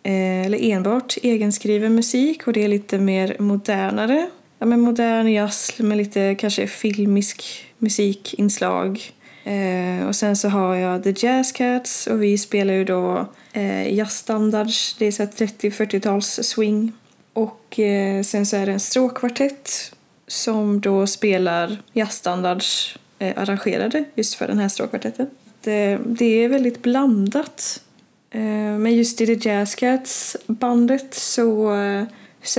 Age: 20-39